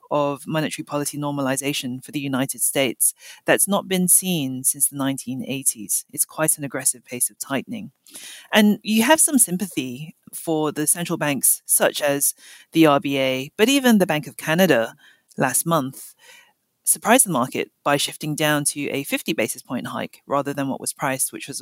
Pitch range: 130-170 Hz